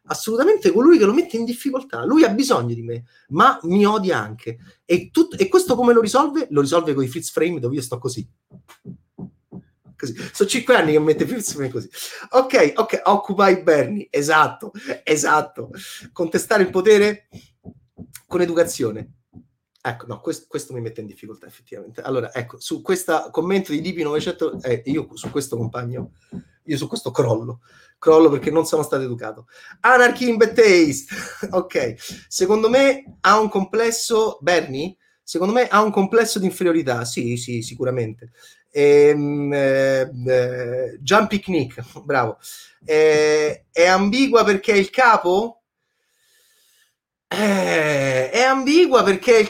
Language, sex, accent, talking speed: Italian, male, native, 150 wpm